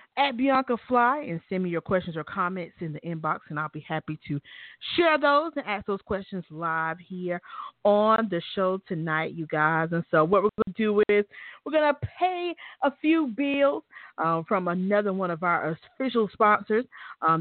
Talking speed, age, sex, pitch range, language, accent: 195 wpm, 40-59, female, 170-240 Hz, English, American